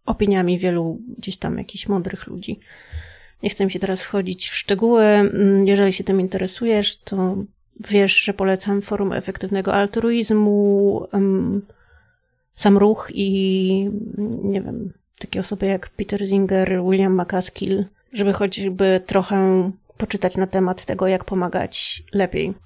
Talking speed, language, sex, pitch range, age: 125 wpm, Polish, female, 190-205 Hz, 30-49